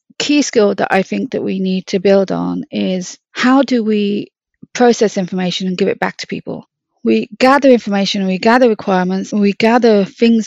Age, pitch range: 30-49, 190-215 Hz